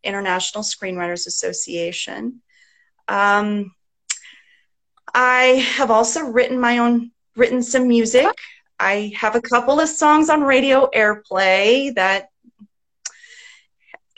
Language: English